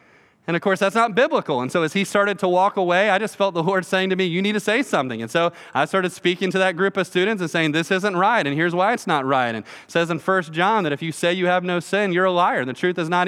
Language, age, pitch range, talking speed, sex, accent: English, 30-49, 150-195 Hz, 310 wpm, male, American